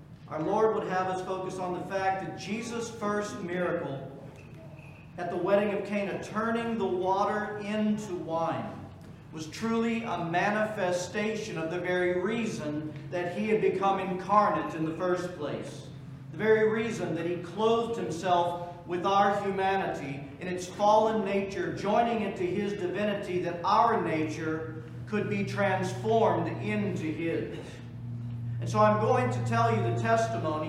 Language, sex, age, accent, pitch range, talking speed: English, male, 40-59, American, 155-200 Hz, 145 wpm